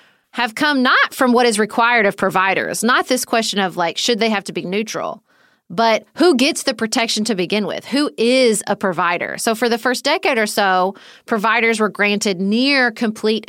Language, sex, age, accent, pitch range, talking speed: English, female, 30-49, American, 195-245 Hz, 195 wpm